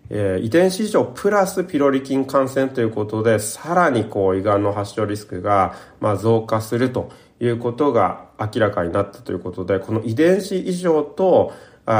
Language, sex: Japanese, male